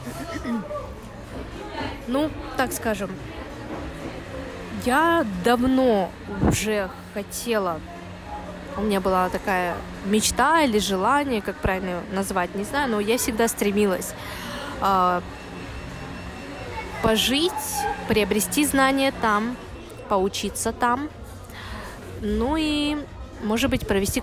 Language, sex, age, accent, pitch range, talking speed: Russian, female, 20-39, native, 195-245 Hz, 85 wpm